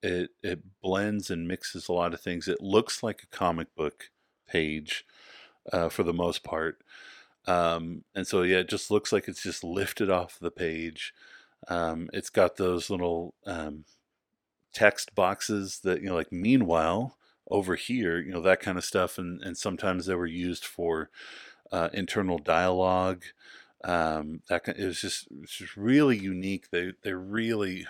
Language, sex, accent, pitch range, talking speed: English, male, American, 85-95 Hz, 165 wpm